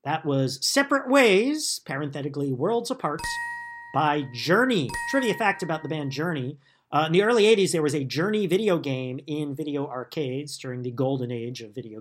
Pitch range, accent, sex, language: 135-175 Hz, American, male, English